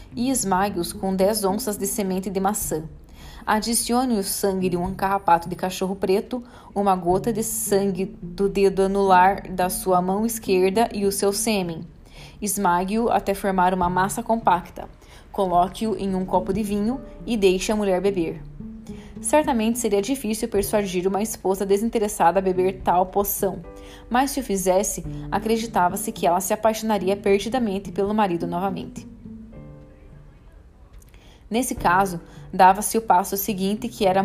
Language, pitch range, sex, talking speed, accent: Portuguese, 180-215 Hz, female, 145 wpm, Brazilian